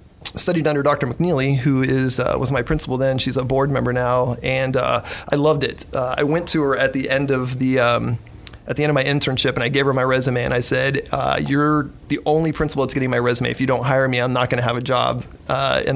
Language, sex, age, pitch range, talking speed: English, male, 30-49, 125-140 Hz, 265 wpm